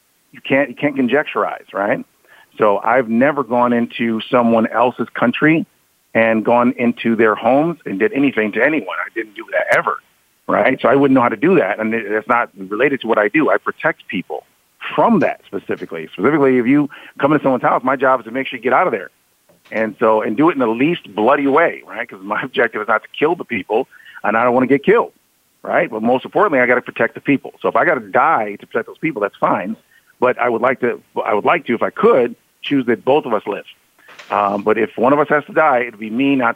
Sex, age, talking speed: male, 40-59, 250 wpm